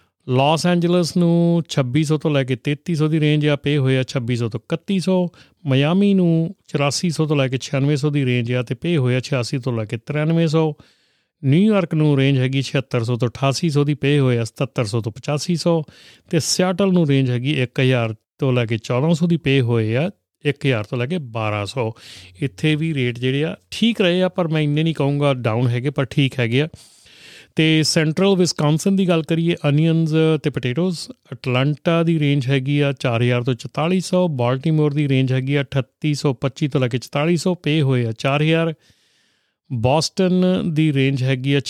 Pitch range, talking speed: 130-160 Hz, 170 wpm